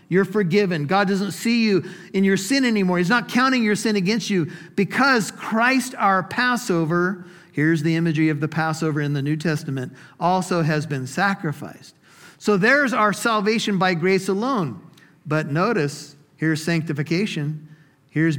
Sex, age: male, 50-69